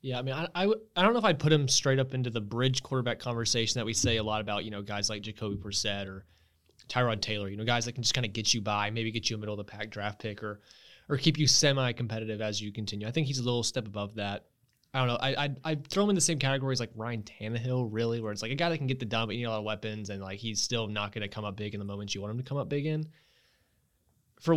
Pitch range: 105-130 Hz